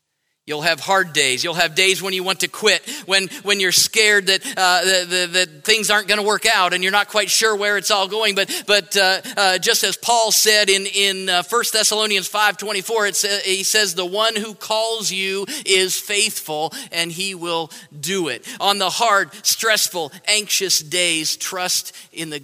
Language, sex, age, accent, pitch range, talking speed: English, male, 40-59, American, 145-195 Hz, 205 wpm